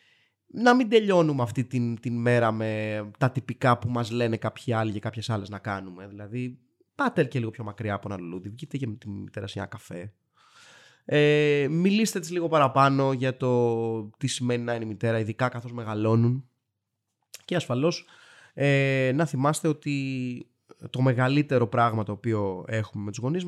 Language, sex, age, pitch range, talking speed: Greek, male, 20-39, 110-145 Hz, 170 wpm